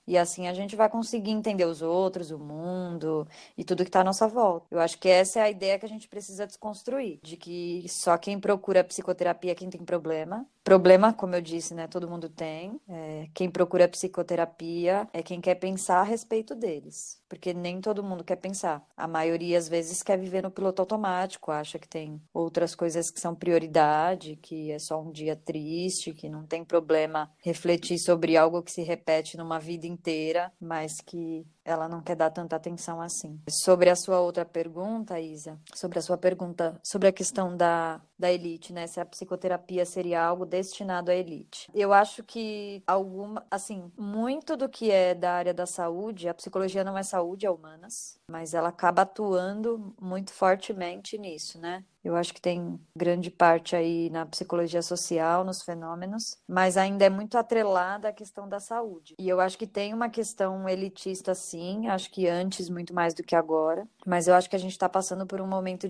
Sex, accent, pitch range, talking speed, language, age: female, Brazilian, 170-190 Hz, 195 wpm, Portuguese, 20-39